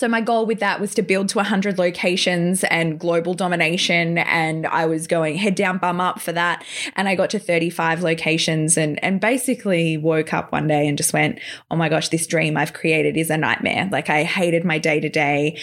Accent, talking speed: Australian, 220 wpm